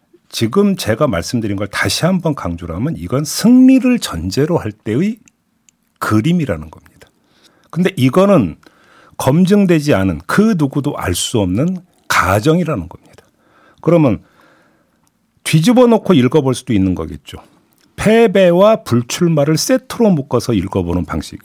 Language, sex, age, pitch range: Korean, male, 50-69, 105-175 Hz